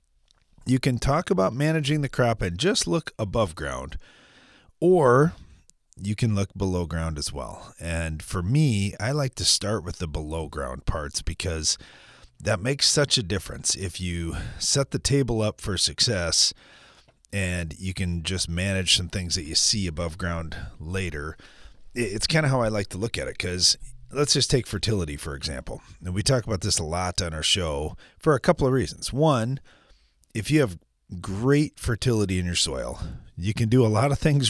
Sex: male